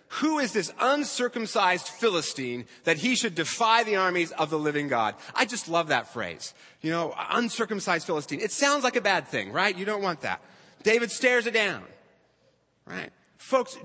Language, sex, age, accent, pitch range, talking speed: English, male, 30-49, American, 155-230 Hz, 180 wpm